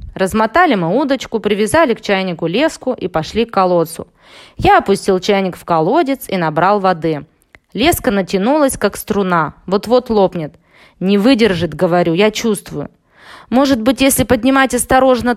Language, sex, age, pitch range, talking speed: Russian, female, 20-39, 190-255 Hz, 135 wpm